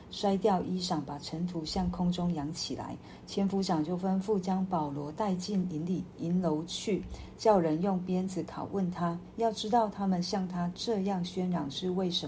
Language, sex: Chinese, female